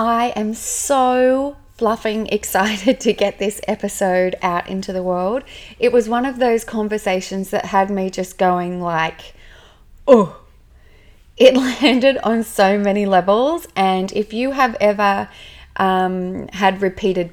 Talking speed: 140 wpm